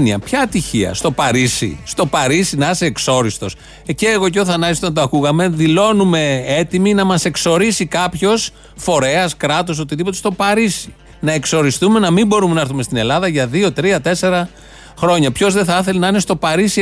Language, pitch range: Greek, 135-185 Hz